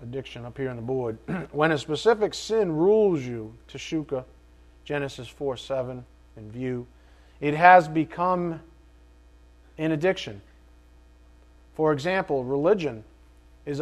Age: 40-59